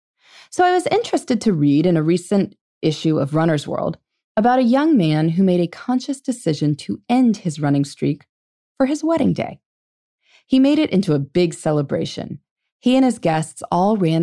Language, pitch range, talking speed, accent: English, 150-220 Hz, 185 wpm, American